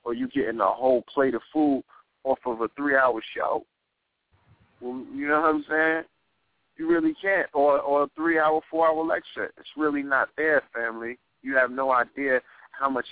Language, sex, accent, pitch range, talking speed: English, male, American, 110-135 Hz, 180 wpm